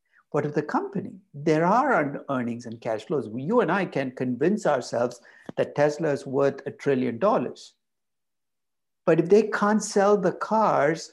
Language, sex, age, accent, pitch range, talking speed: English, male, 60-79, Indian, 135-185 Hz, 165 wpm